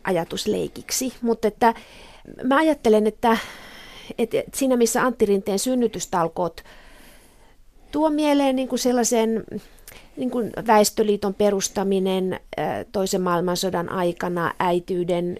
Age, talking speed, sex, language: 30-49, 90 wpm, female, Finnish